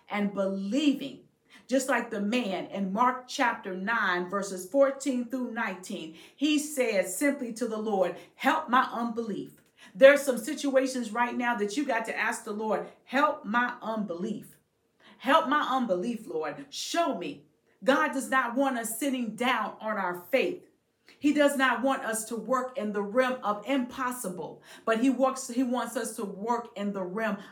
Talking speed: 170 wpm